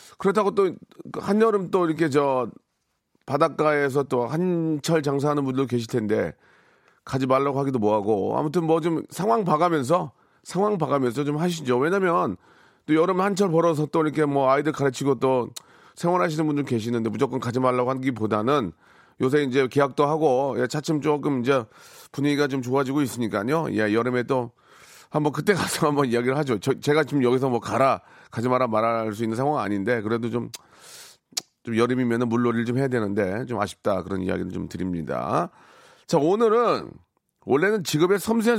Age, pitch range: 40-59, 120-160 Hz